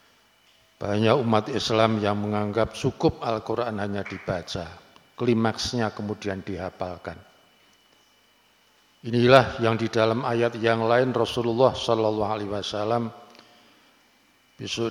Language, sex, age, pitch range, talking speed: Indonesian, male, 50-69, 105-125 Hz, 90 wpm